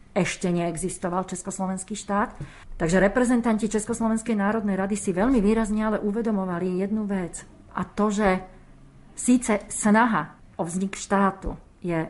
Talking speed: 125 wpm